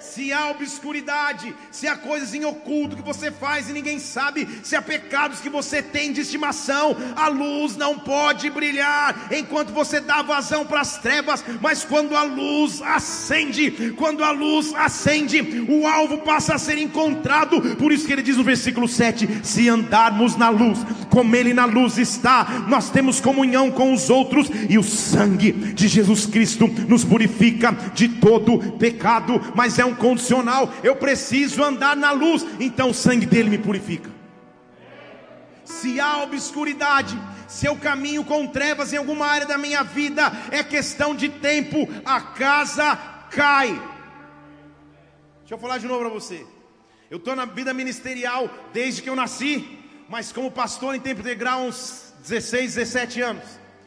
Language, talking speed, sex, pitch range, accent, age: English, 165 wpm, male, 240-290 Hz, Brazilian, 40-59